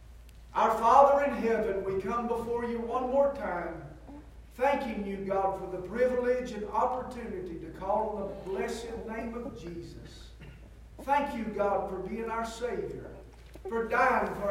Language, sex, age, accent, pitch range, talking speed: English, male, 50-69, American, 205-270 Hz, 155 wpm